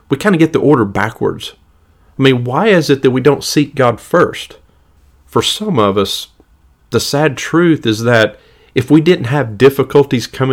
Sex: male